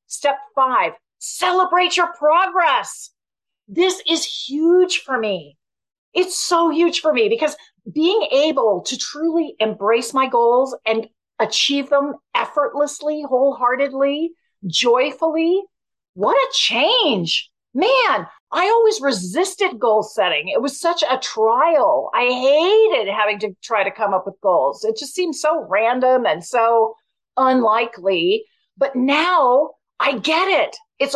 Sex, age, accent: female, 40-59, American